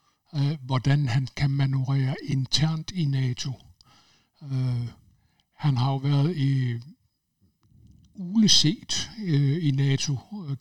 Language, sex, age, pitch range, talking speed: Danish, male, 60-79, 125-145 Hz, 105 wpm